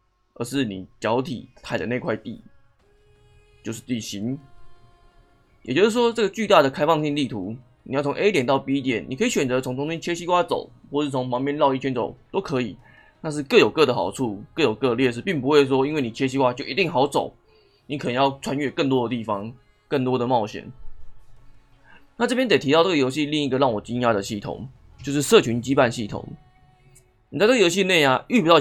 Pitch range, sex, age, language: 115-150 Hz, male, 20-39, Chinese